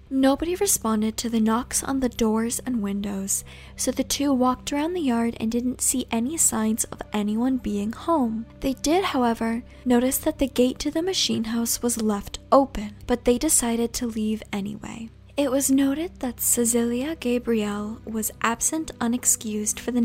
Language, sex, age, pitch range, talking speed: English, female, 10-29, 220-260 Hz, 170 wpm